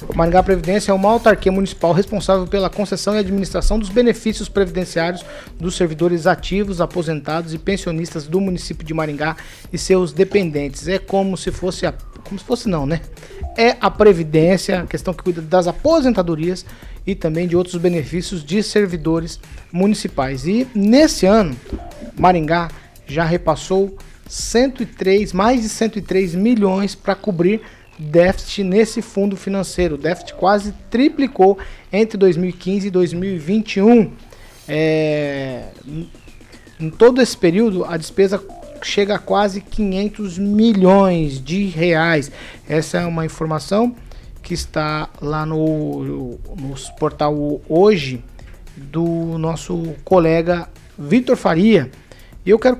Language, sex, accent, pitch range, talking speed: Portuguese, male, Brazilian, 165-205 Hz, 125 wpm